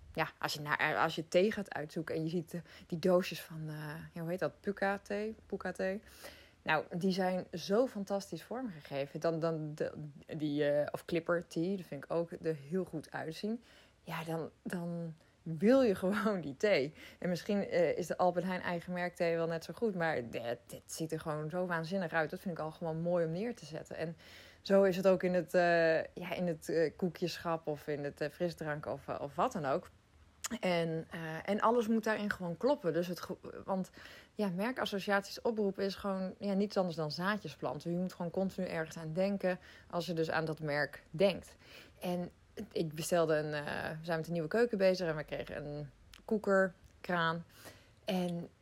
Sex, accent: female, Dutch